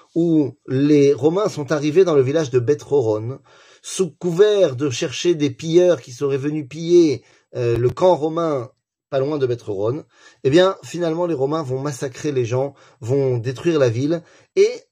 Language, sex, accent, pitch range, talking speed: French, male, French, 120-165 Hz, 170 wpm